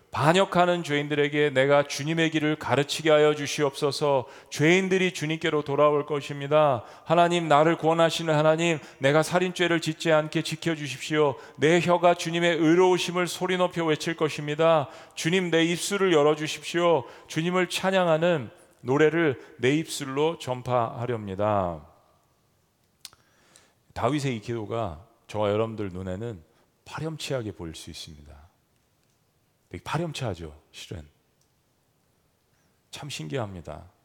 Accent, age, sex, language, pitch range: native, 40-59, male, Korean, 105-160 Hz